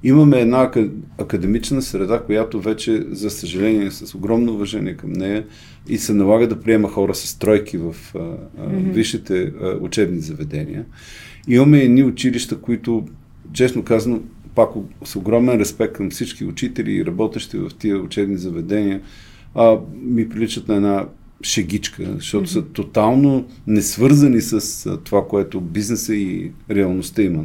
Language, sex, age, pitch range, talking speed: Bulgarian, male, 40-59, 105-130 Hz, 140 wpm